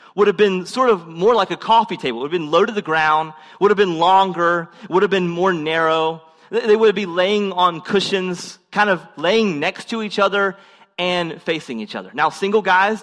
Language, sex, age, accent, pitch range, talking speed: English, male, 30-49, American, 165-215 Hz, 215 wpm